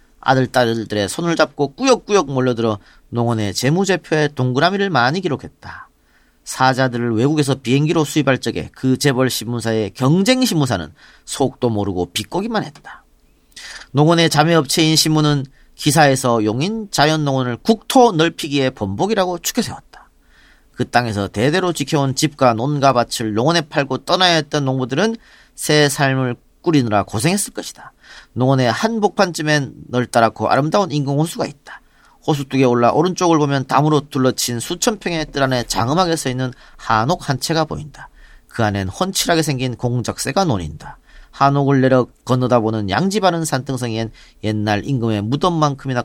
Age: 40-59